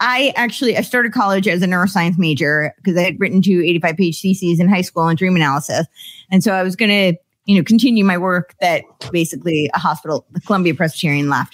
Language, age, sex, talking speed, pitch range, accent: English, 30-49, female, 215 wpm, 170-225 Hz, American